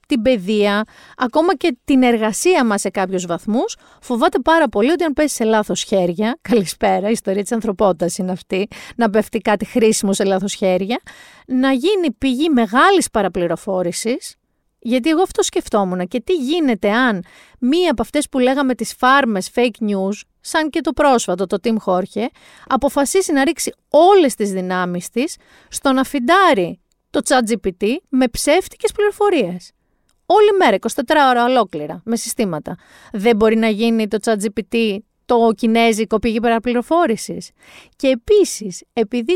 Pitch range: 205-290 Hz